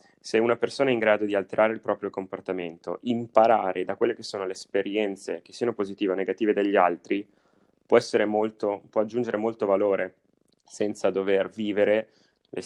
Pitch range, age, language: 95-120 Hz, 20-39, Italian